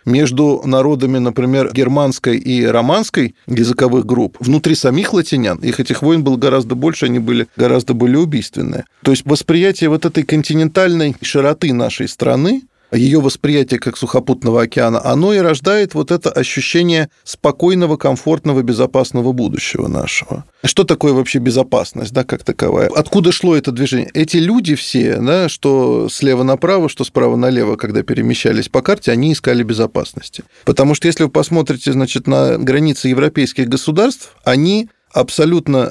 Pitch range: 125-155 Hz